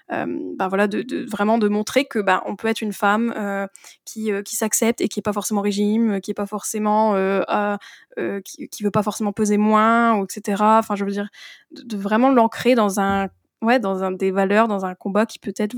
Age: 10-29